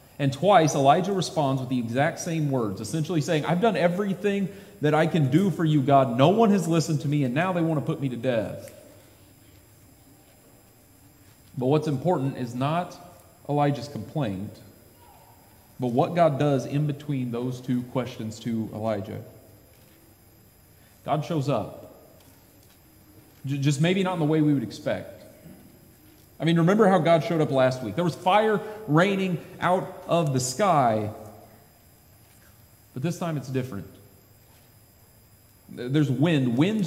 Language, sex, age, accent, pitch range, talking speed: English, male, 30-49, American, 110-160 Hz, 150 wpm